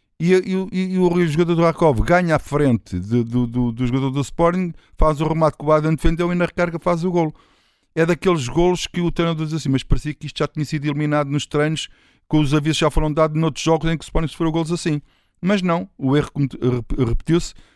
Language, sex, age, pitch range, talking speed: Portuguese, male, 50-69, 125-160 Hz, 235 wpm